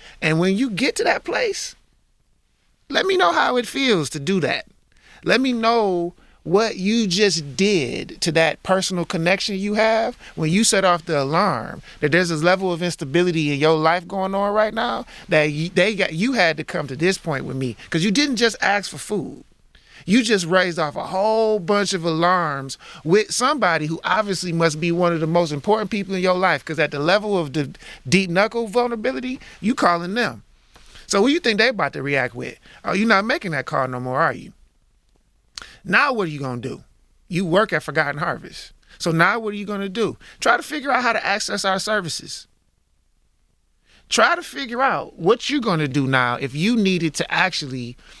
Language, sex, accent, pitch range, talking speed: English, male, American, 160-215 Hz, 205 wpm